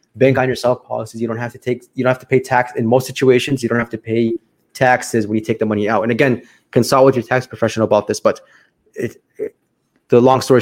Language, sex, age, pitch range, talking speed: English, male, 20-39, 115-130 Hz, 255 wpm